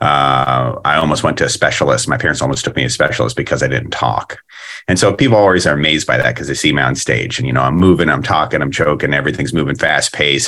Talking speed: 265 wpm